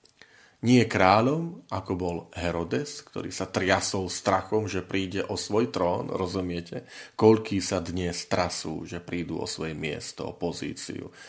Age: 40-59